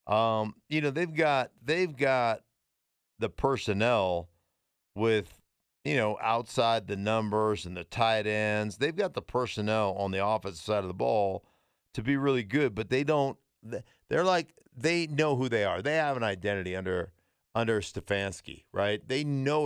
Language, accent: English, American